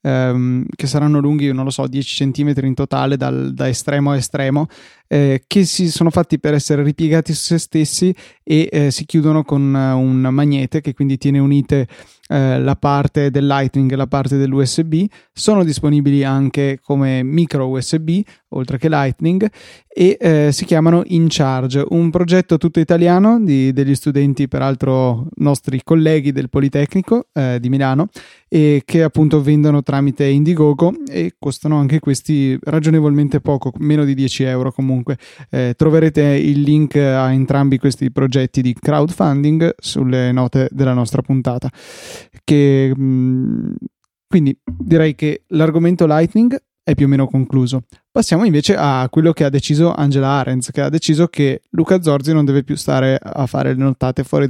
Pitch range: 135-155 Hz